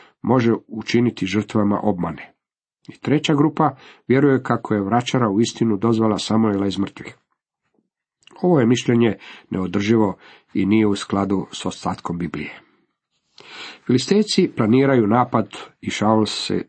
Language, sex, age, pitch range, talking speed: Croatian, male, 50-69, 105-135 Hz, 120 wpm